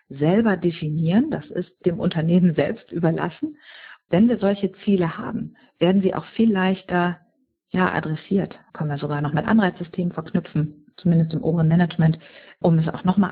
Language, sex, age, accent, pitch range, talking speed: German, female, 50-69, German, 160-190 Hz, 155 wpm